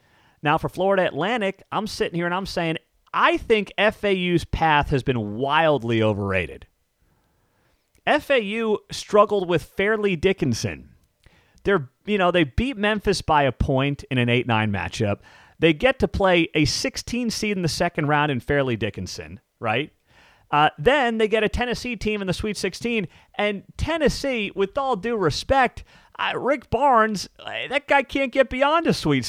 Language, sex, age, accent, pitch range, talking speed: English, male, 30-49, American, 145-215 Hz, 160 wpm